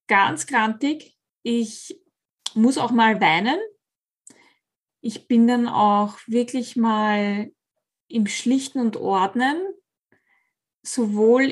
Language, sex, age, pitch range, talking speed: German, female, 20-39, 215-255 Hz, 95 wpm